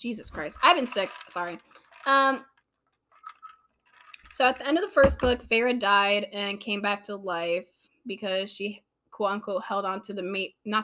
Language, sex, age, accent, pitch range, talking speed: English, female, 10-29, American, 200-245 Hz, 175 wpm